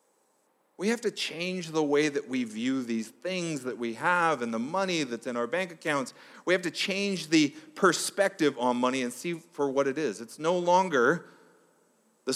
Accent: American